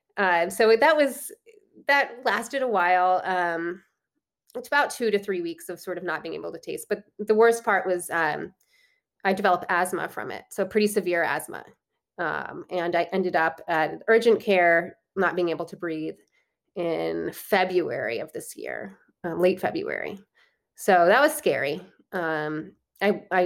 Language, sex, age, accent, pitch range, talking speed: English, female, 20-39, American, 170-220 Hz, 170 wpm